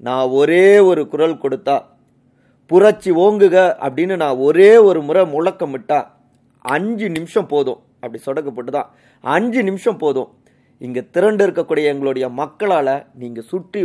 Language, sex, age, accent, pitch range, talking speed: Tamil, male, 30-49, native, 130-175 Hz, 125 wpm